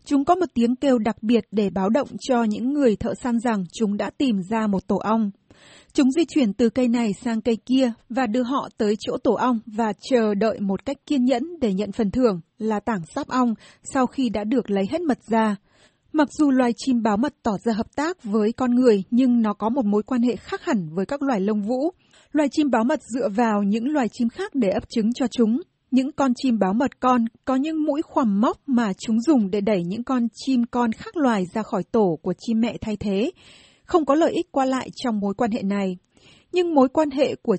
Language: Vietnamese